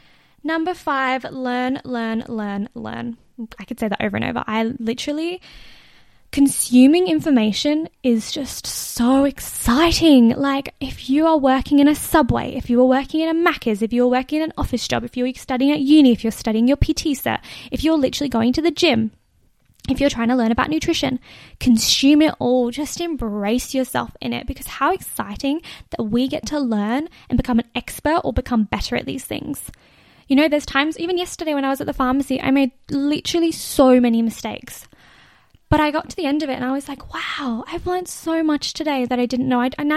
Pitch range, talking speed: 245-300 Hz, 205 wpm